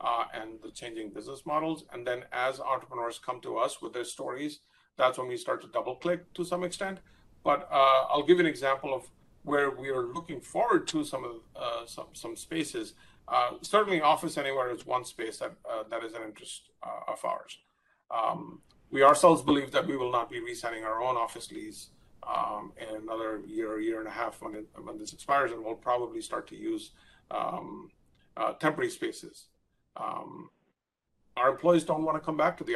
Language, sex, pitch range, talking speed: English, male, 120-185 Hz, 200 wpm